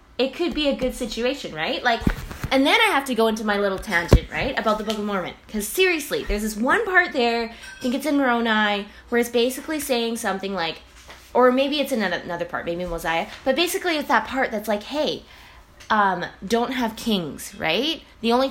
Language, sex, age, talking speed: English, female, 10-29, 210 wpm